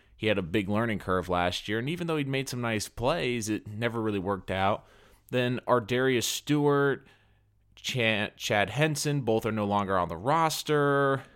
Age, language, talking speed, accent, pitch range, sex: 20-39, English, 175 wpm, American, 105-140 Hz, male